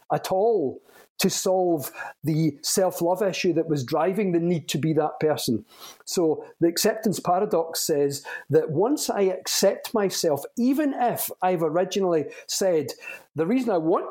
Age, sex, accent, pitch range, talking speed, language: 40-59, male, British, 160-205 Hz, 150 wpm, English